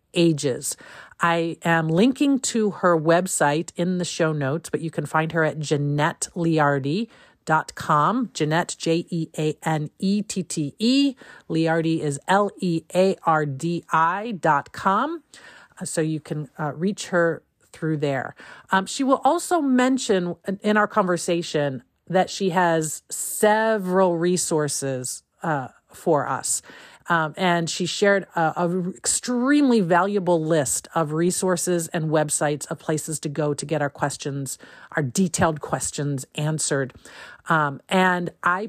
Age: 40-59